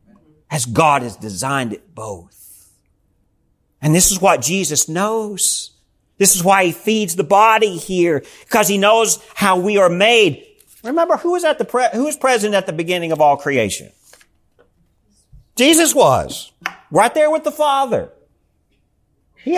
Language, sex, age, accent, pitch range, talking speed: English, male, 50-69, American, 165-230 Hz, 155 wpm